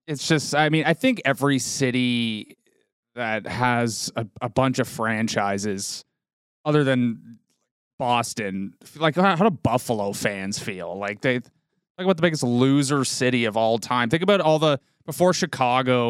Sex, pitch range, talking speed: male, 115-155 Hz, 155 wpm